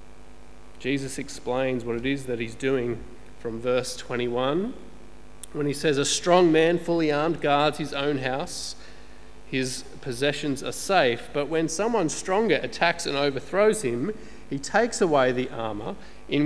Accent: Australian